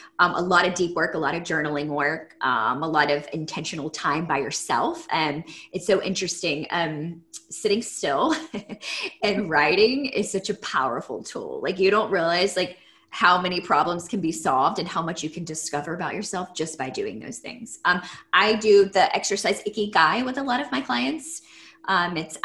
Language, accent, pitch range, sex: English, American, 165-220 Hz, female